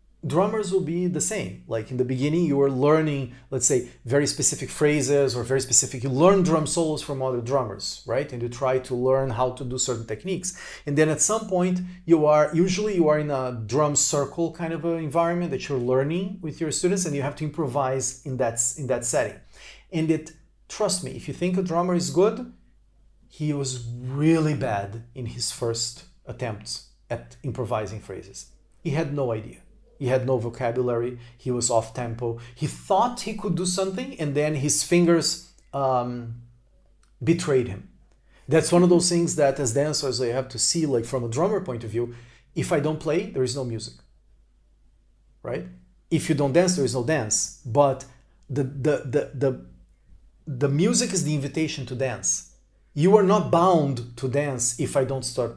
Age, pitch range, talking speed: 40-59, 125-165 Hz, 190 wpm